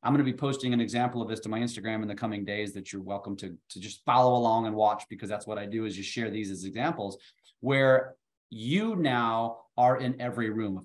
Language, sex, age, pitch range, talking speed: English, male, 30-49, 110-130 Hz, 250 wpm